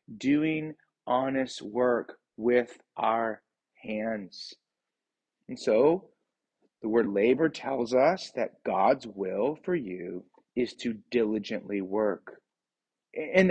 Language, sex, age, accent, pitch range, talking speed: English, male, 30-49, American, 120-165 Hz, 100 wpm